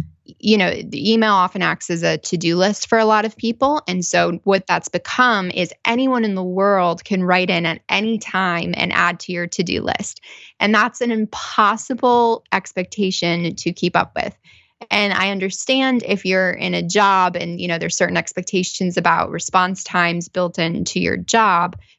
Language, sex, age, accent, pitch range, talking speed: English, female, 20-39, American, 175-210 Hz, 185 wpm